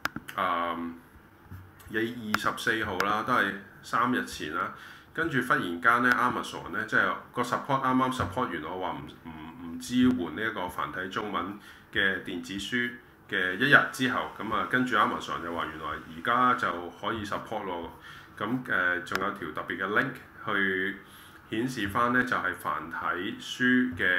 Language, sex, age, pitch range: Chinese, male, 20-39, 90-125 Hz